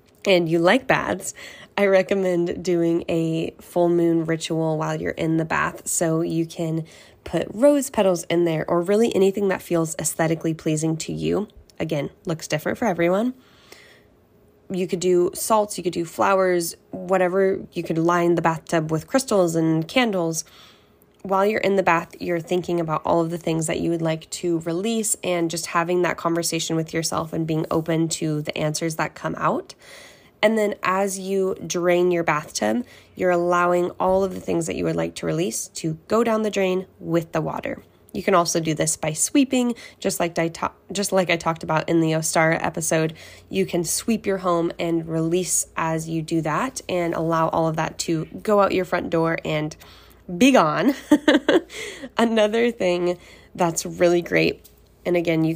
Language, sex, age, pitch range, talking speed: English, female, 10-29, 165-195 Hz, 180 wpm